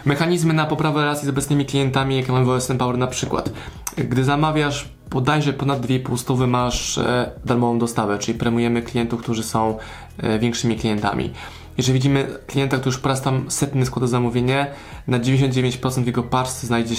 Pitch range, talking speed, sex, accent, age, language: 115-135 Hz, 160 wpm, male, native, 20-39, Polish